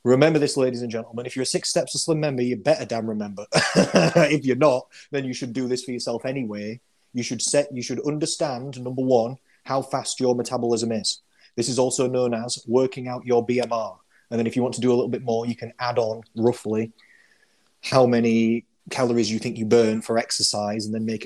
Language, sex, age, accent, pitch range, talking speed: English, male, 30-49, British, 115-135 Hz, 220 wpm